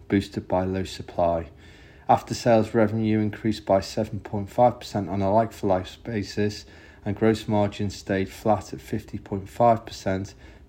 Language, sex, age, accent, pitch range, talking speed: English, male, 30-49, British, 95-105 Hz, 120 wpm